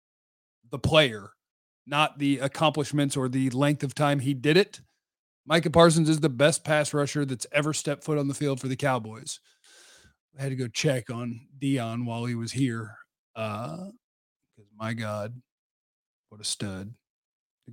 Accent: American